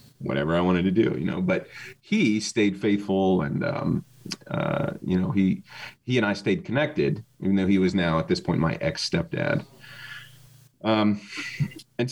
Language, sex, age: English, male, 30-49